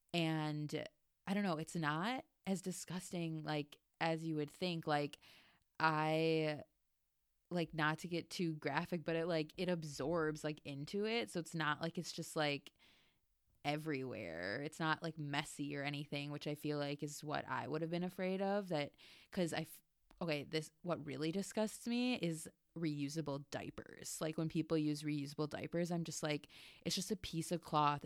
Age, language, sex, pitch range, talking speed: 20-39, English, female, 150-170 Hz, 175 wpm